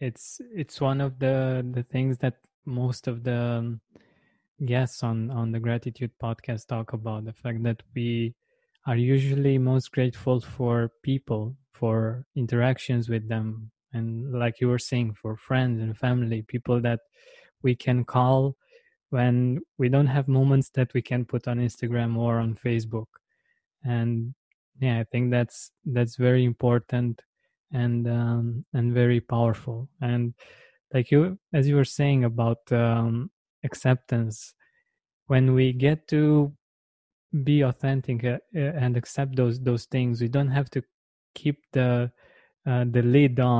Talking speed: 145 wpm